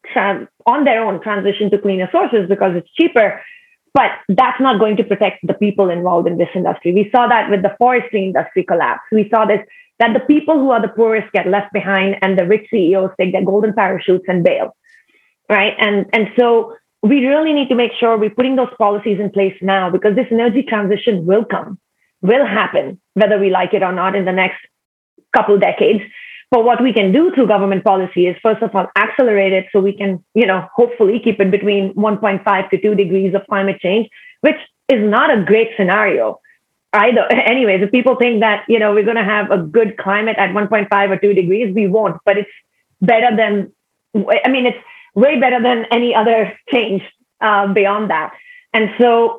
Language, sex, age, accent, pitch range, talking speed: English, female, 30-49, Indian, 195-235 Hz, 200 wpm